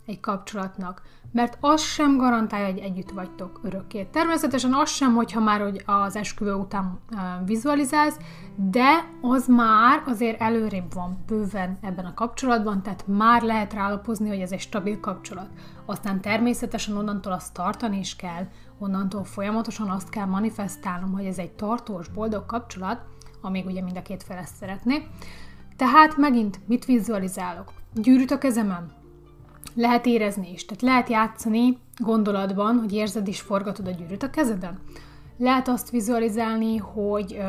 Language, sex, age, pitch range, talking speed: Hungarian, female, 30-49, 190-235 Hz, 145 wpm